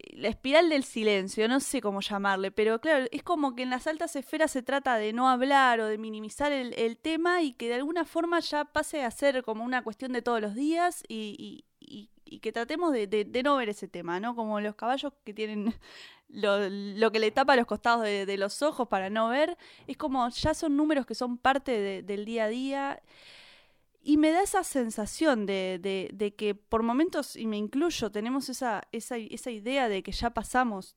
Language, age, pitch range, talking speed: Spanish, 20-39, 200-265 Hz, 220 wpm